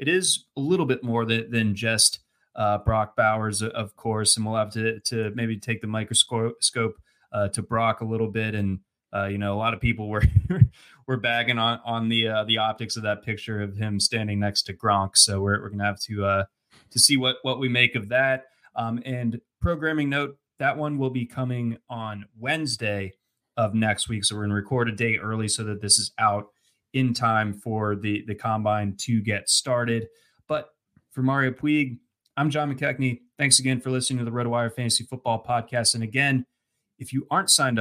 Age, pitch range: 20-39, 110-125 Hz